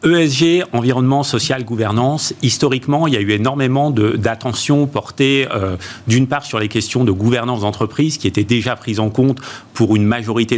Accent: French